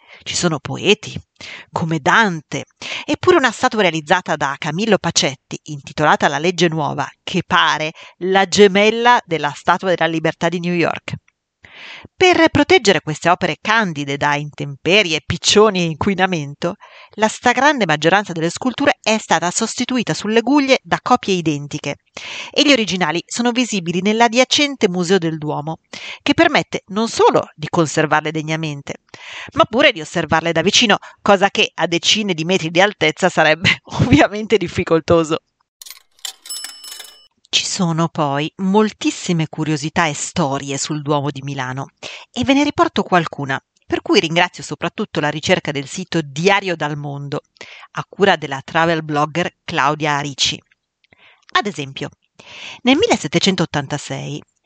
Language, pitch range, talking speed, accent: Italian, 155-215 Hz, 135 wpm, native